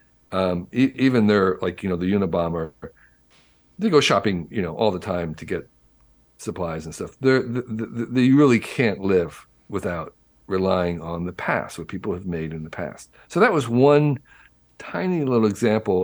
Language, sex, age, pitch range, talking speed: English, male, 50-69, 90-120 Hz, 170 wpm